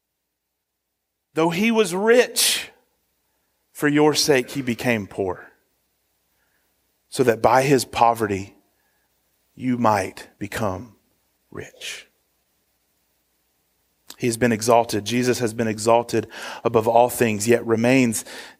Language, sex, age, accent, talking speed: English, male, 30-49, American, 100 wpm